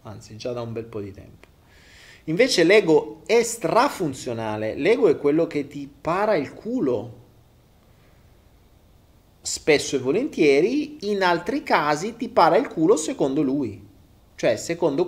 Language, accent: Italian, native